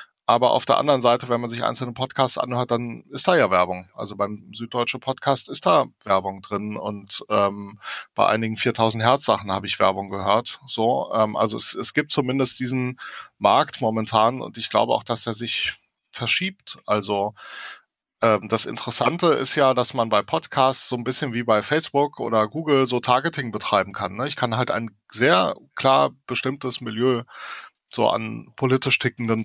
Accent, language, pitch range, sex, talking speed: German, German, 110-130 Hz, male, 175 wpm